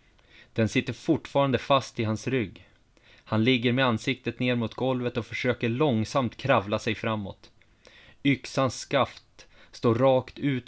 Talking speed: 140 wpm